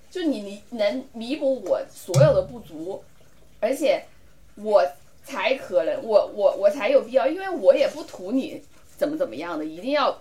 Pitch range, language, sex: 255-305 Hz, Chinese, female